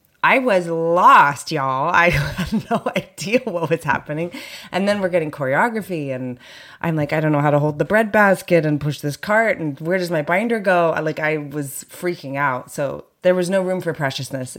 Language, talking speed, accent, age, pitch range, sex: English, 205 wpm, American, 30-49, 135-170 Hz, female